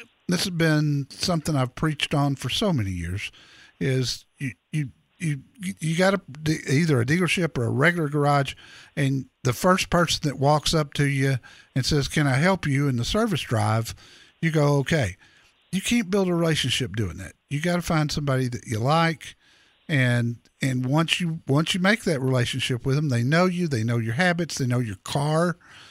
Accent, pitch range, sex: American, 125-165 Hz, male